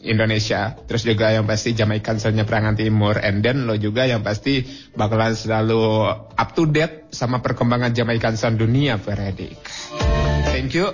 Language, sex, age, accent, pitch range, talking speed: Indonesian, male, 20-39, native, 110-140 Hz, 155 wpm